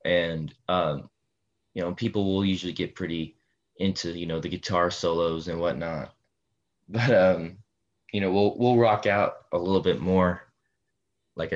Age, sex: 20-39, male